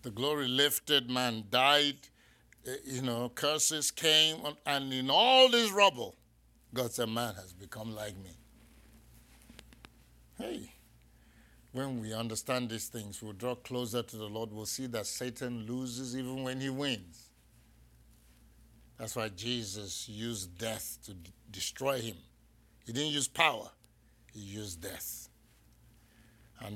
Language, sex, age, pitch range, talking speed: English, male, 60-79, 105-125 Hz, 130 wpm